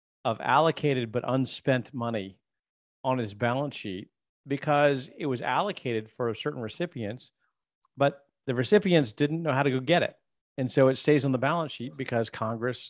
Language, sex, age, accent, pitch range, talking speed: English, male, 40-59, American, 115-140 Hz, 165 wpm